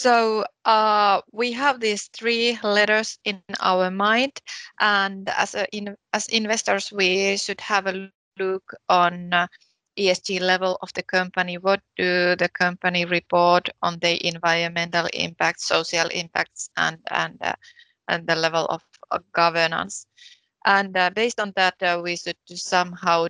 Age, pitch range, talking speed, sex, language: 20-39, 175-210 Hz, 145 wpm, female, Swedish